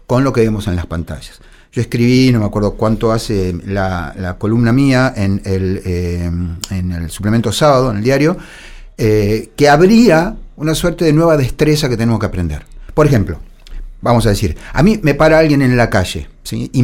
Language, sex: Spanish, male